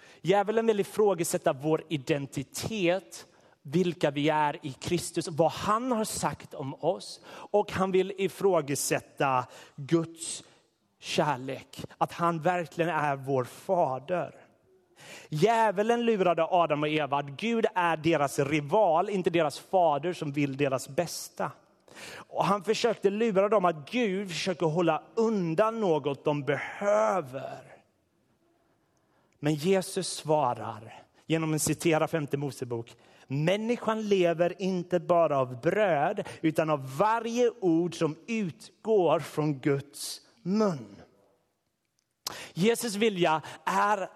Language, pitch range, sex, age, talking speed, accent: Swedish, 150-205 Hz, male, 30-49, 115 wpm, native